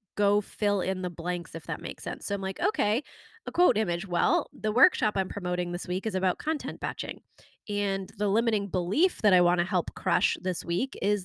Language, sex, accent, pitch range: English, female, American, 185-225 Hz